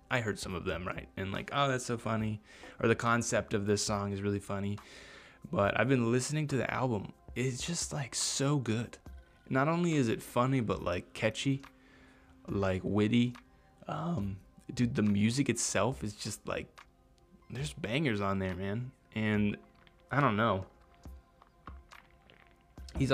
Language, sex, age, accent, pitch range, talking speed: English, male, 20-39, American, 95-120 Hz, 160 wpm